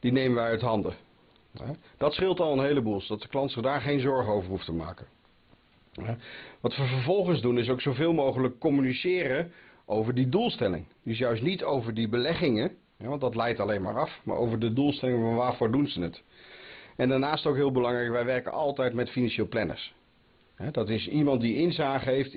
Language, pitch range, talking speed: Dutch, 110-140 Hz, 195 wpm